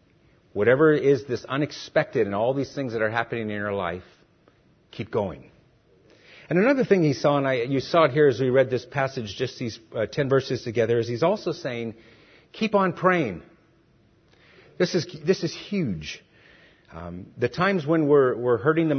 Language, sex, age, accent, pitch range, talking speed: English, male, 50-69, American, 120-160 Hz, 185 wpm